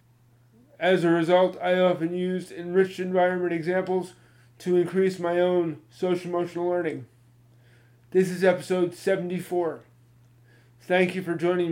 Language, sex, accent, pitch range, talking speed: English, male, American, 120-180 Hz, 120 wpm